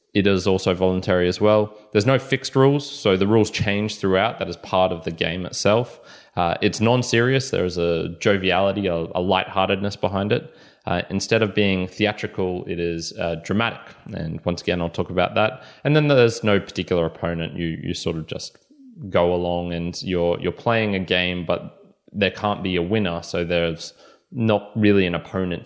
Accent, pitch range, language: Australian, 90-110 Hz, English